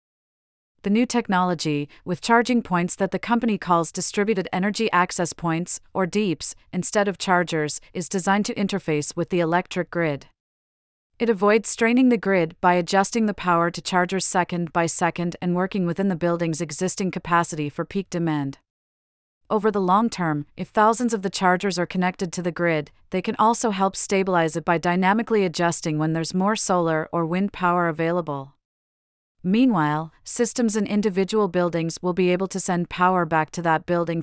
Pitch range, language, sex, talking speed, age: 165-195 Hz, English, female, 170 wpm, 40-59